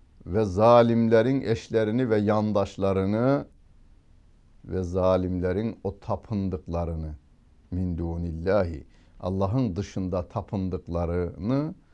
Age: 60-79